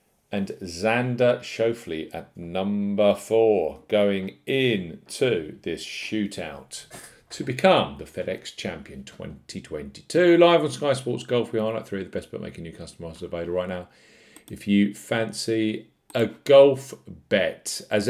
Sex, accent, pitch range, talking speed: male, British, 95-120 Hz, 135 wpm